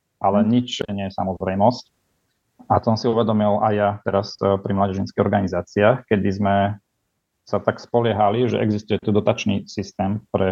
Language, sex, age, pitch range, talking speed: Slovak, male, 30-49, 95-110 Hz, 150 wpm